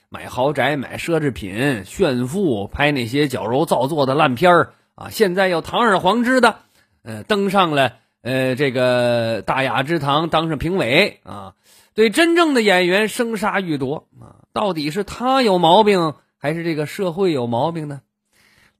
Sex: male